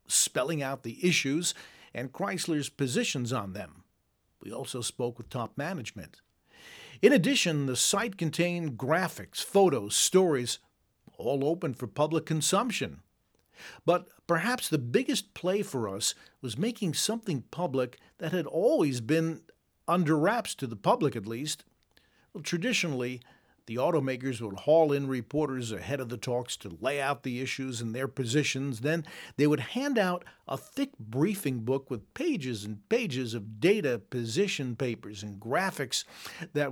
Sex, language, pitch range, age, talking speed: male, English, 130-180 Hz, 50-69, 145 wpm